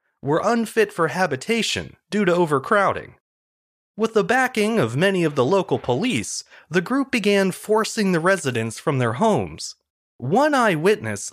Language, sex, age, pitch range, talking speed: English, male, 30-49, 140-205 Hz, 145 wpm